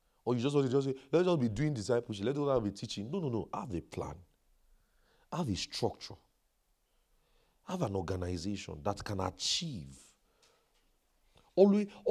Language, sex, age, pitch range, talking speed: English, male, 40-59, 100-145 Hz, 160 wpm